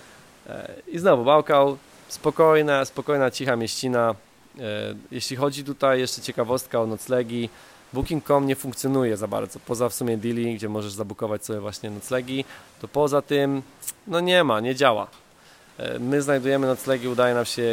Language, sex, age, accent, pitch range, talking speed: Polish, male, 20-39, native, 115-135 Hz, 145 wpm